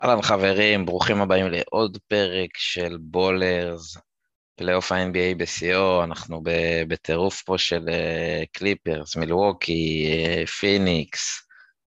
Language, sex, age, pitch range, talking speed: Hebrew, male, 20-39, 85-95 Hz, 90 wpm